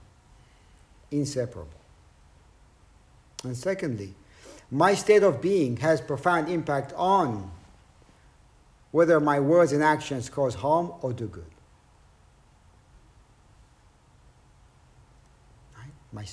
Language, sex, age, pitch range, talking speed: English, male, 50-69, 105-160 Hz, 80 wpm